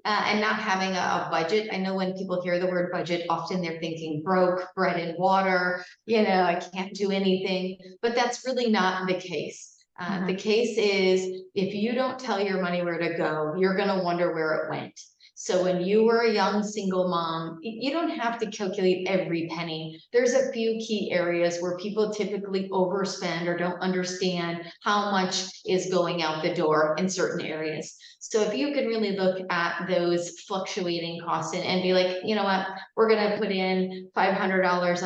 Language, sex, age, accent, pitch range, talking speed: English, female, 30-49, American, 180-215 Hz, 195 wpm